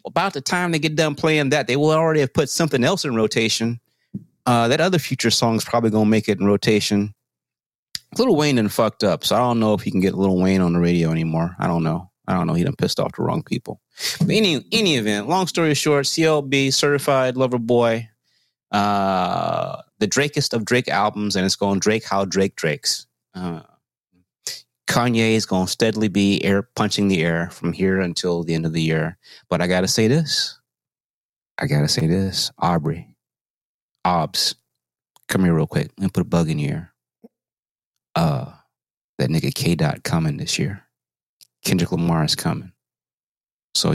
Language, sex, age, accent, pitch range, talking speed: English, male, 30-49, American, 90-130 Hz, 195 wpm